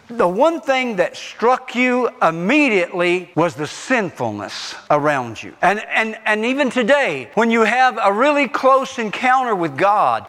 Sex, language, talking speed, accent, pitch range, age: male, English, 150 wpm, American, 170-250 Hz, 50-69